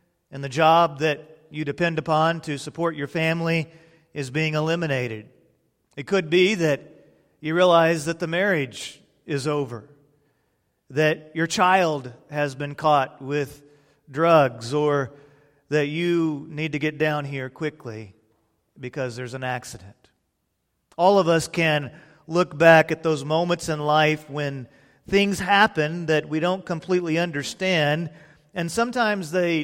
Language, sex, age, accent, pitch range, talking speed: English, male, 40-59, American, 145-175 Hz, 140 wpm